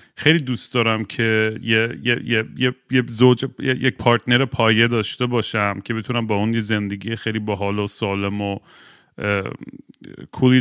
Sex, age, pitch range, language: male, 40-59, 110-135 Hz, Persian